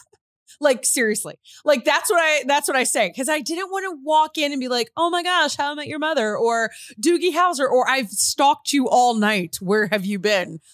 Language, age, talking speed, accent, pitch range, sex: English, 20-39, 230 wpm, American, 230-350 Hz, female